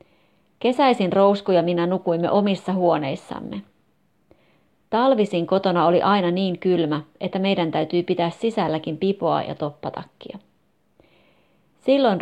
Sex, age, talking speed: female, 30-49, 110 wpm